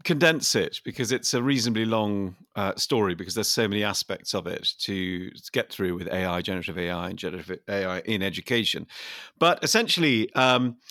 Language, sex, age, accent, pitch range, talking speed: English, male, 40-59, British, 105-140 Hz, 170 wpm